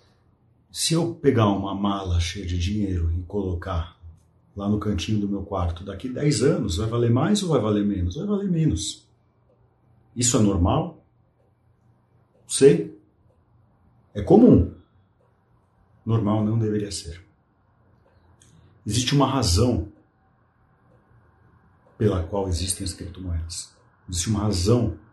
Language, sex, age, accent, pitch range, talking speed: Portuguese, male, 50-69, Brazilian, 95-120 Hz, 120 wpm